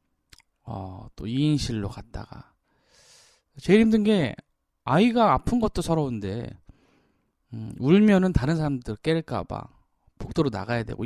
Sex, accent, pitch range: male, native, 110-150 Hz